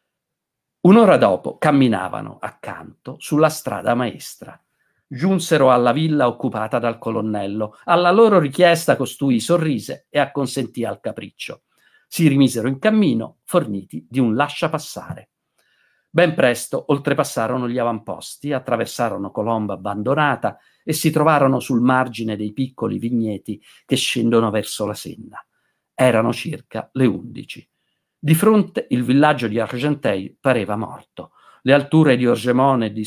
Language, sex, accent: Italian, male, native